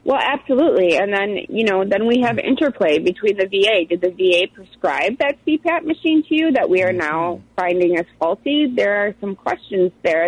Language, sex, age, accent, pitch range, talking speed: English, female, 30-49, American, 170-215 Hz, 200 wpm